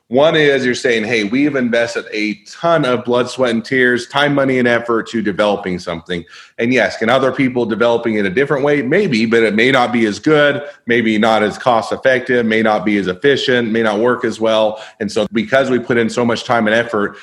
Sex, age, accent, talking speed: male, 40-59, American, 225 wpm